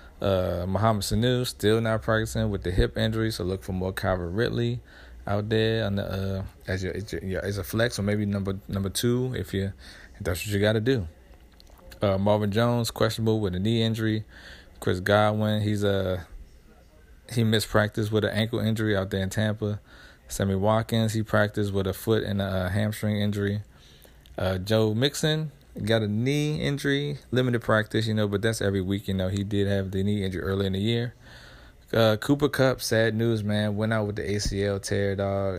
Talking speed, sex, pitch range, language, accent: 195 wpm, male, 95-110 Hz, English, American